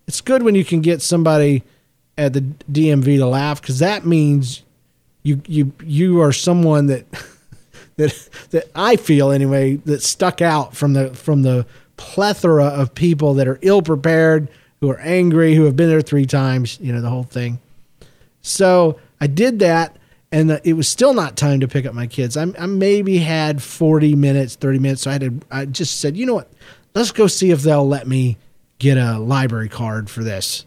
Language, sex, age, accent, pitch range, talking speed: English, male, 40-59, American, 130-175 Hz, 195 wpm